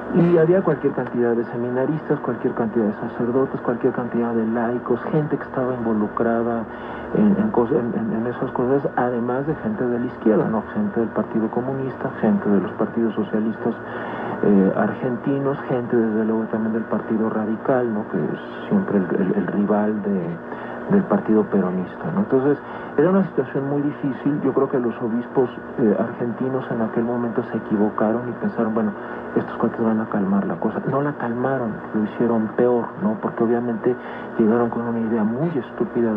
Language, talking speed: Spanish, 175 wpm